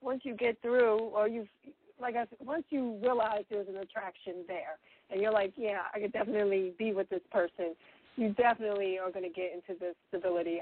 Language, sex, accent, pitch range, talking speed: English, female, American, 185-240 Hz, 205 wpm